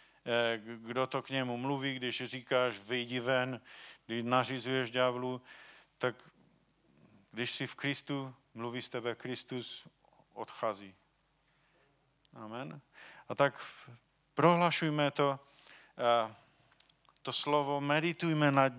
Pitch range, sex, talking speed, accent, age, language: 125-150 Hz, male, 100 wpm, native, 50-69, Czech